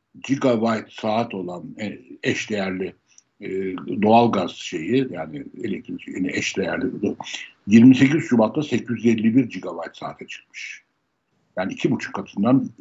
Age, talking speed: 60-79, 95 wpm